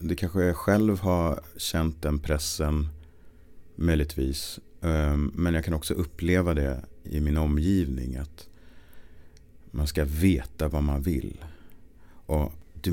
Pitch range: 75-95 Hz